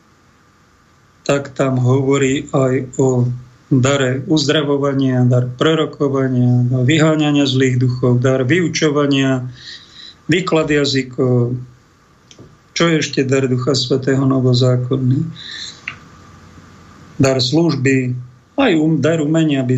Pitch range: 130-155 Hz